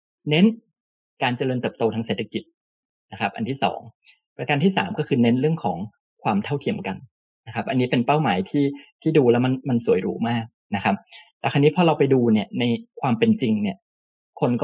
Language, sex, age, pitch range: Thai, male, 20-39, 120-165 Hz